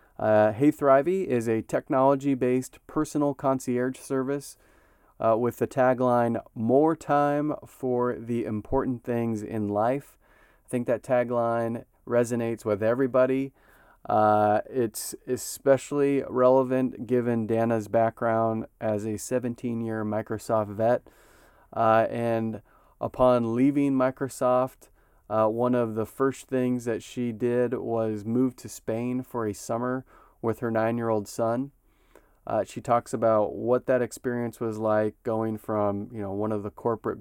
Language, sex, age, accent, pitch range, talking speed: English, male, 30-49, American, 110-130 Hz, 135 wpm